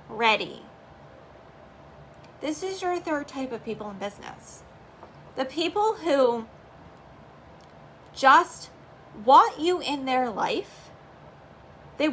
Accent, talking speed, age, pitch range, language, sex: American, 100 wpm, 10-29, 230-315 Hz, English, female